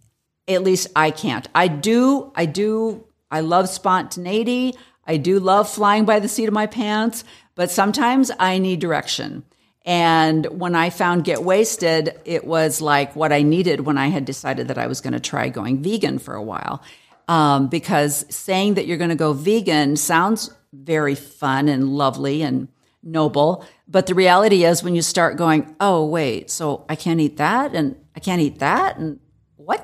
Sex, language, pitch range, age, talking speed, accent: female, English, 155-205 Hz, 50-69, 185 wpm, American